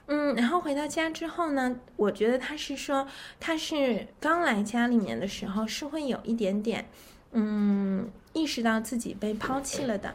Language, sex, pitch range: Chinese, female, 230-290 Hz